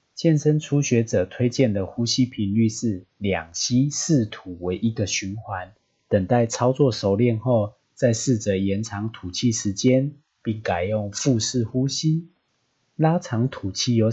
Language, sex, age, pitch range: Chinese, male, 30-49, 105-130 Hz